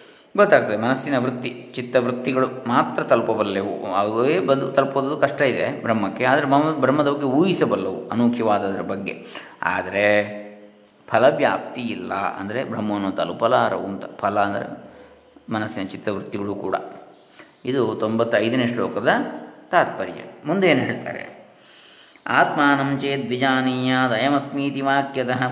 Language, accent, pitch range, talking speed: Kannada, native, 115-140 Hz, 95 wpm